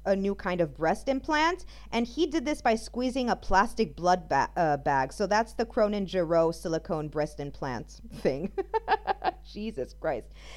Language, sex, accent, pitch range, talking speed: English, female, American, 175-255 Hz, 165 wpm